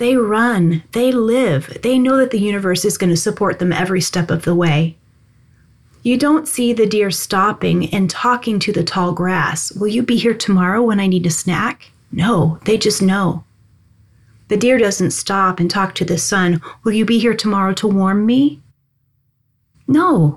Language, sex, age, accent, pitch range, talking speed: English, female, 30-49, American, 170-225 Hz, 185 wpm